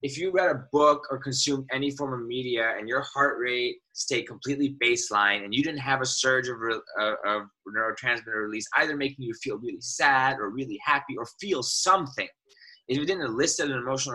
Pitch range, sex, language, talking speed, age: 115-160 Hz, male, English, 200 wpm, 20-39